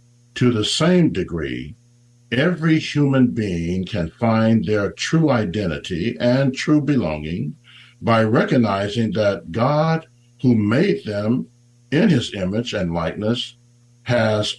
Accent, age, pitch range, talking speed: American, 60-79, 115-140 Hz, 115 wpm